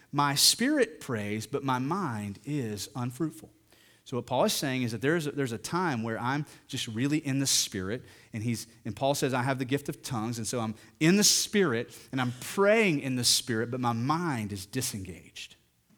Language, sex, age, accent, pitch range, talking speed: English, male, 30-49, American, 120-160 Hz, 205 wpm